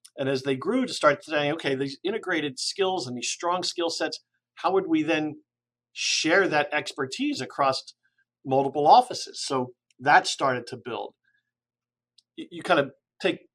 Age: 50-69